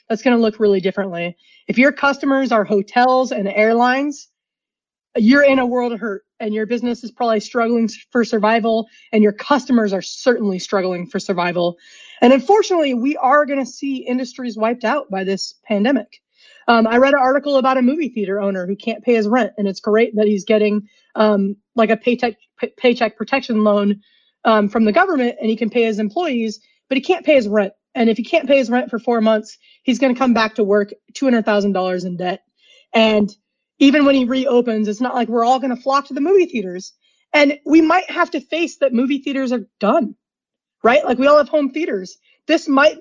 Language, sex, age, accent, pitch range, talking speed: English, female, 30-49, American, 215-280 Hz, 205 wpm